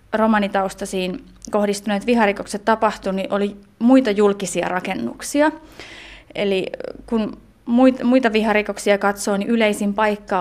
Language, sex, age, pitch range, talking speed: Finnish, female, 30-49, 185-220 Hz, 100 wpm